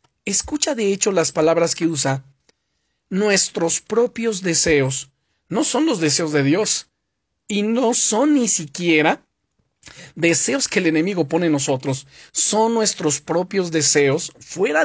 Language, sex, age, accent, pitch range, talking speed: Spanish, male, 40-59, Mexican, 145-200 Hz, 135 wpm